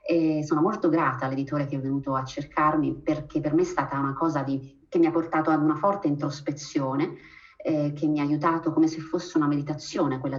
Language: Italian